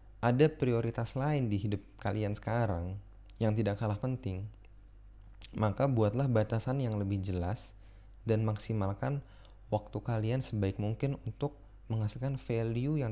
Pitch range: 100-115 Hz